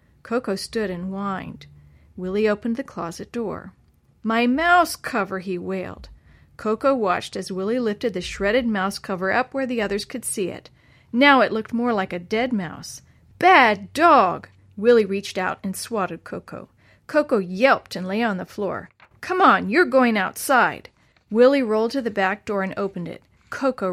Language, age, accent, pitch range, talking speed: English, 40-59, American, 195-265 Hz, 170 wpm